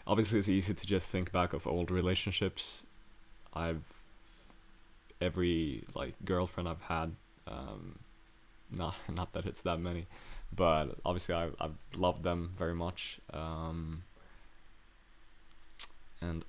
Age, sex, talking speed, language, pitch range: 20-39, male, 125 wpm, English, 85-95 Hz